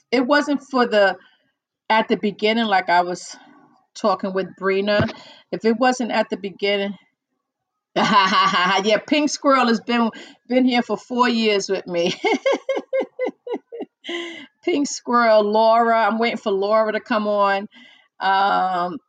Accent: American